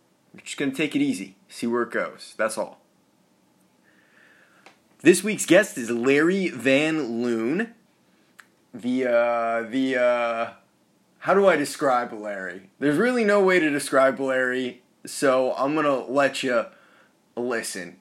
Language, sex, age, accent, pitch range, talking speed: English, male, 20-39, American, 120-155 Hz, 145 wpm